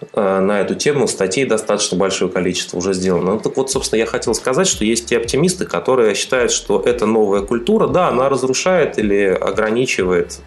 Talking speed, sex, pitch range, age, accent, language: 180 wpm, male, 90-125 Hz, 20-39, native, Russian